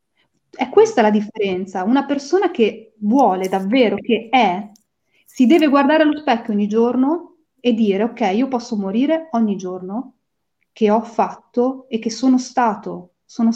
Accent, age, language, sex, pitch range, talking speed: native, 30-49, Italian, female, 205-260 Hz, 150 wpm